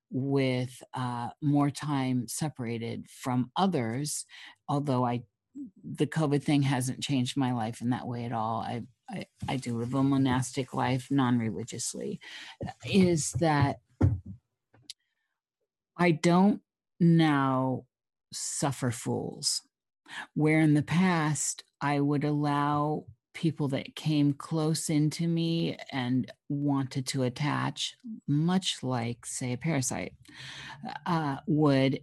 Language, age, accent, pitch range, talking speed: English, 50-69, American, 125-150 Hz, 115 wpm